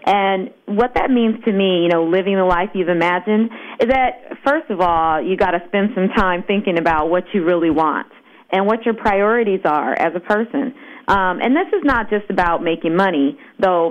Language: English